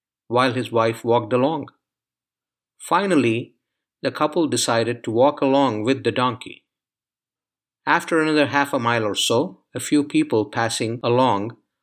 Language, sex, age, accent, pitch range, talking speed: English, male, 50-69, Indian, 120-145 Hz, 135 wpm